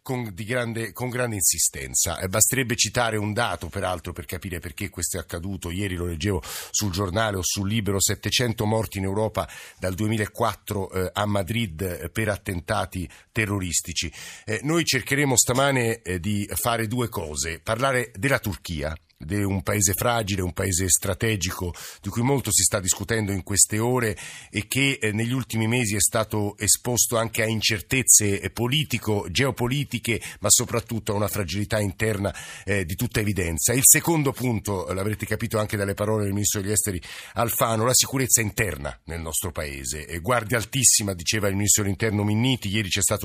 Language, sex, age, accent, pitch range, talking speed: Italian, male, 50-69, native, 95-115 Hz, 160 wpm